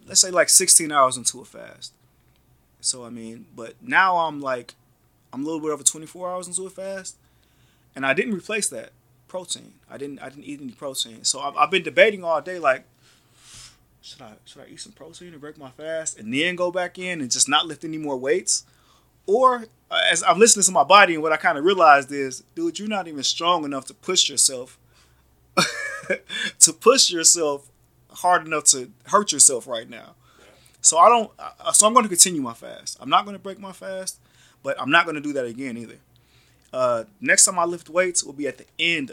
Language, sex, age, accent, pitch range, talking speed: English, male, 30-49, American, 135-185 Hz, 215 wpm